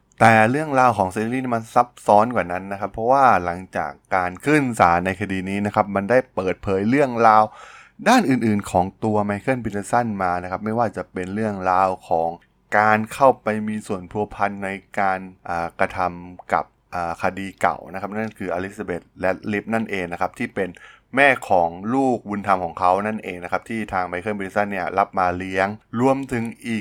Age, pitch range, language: 20-39, 90-115 Hz, Thai